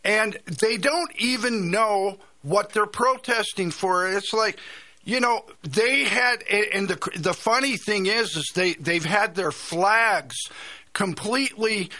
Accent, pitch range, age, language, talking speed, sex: American, 165-235 Hz, 50-69, English, 140 wpm, male